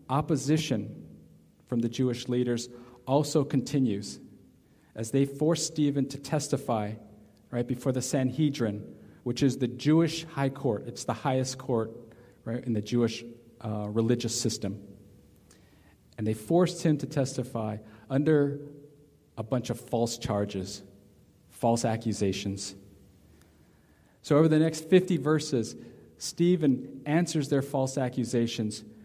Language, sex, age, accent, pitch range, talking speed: English, male, 50-69, American, 110-140 Hz, 120 wpm